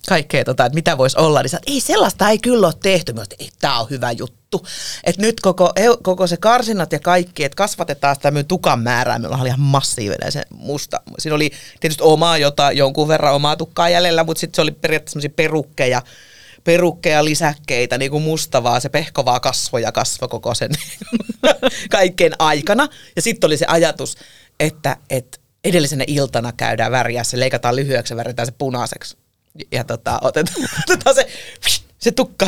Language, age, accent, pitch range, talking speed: Finnish, 30-49, native, 130-180 Hz, 170 wpm